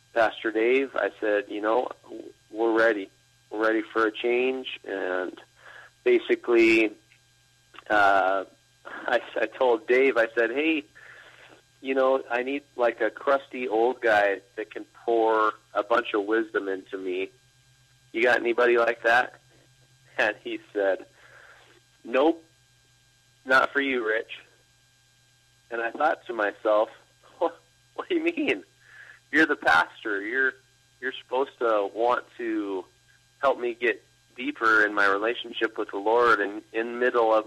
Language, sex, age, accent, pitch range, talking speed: English, male, 30-49, American, 105-135 Hz, 140 wpm